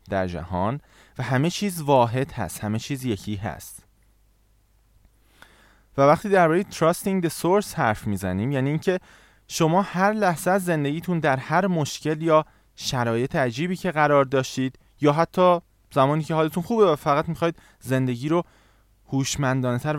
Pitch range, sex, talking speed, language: 105-165 Hz, male, 145 wpm, Persian